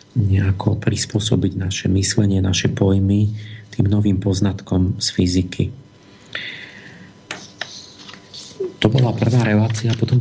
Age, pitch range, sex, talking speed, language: 40-59, 100-115 Hz, male, 95 wpm, Slovak